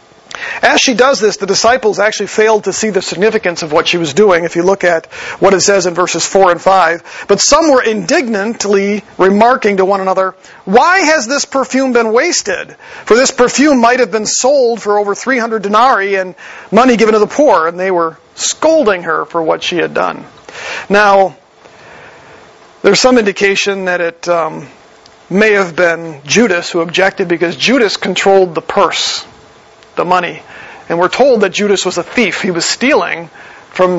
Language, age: English, 40-59